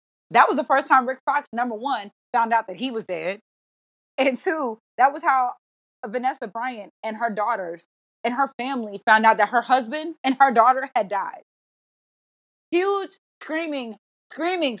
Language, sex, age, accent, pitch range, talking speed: English, female, 20-39, American, 220-275 Hz, 165 wpm